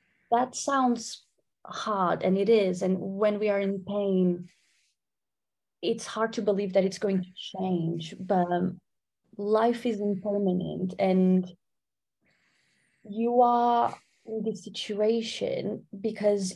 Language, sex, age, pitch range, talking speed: English, female, 20-39, 185-215 Hz, 115 wpm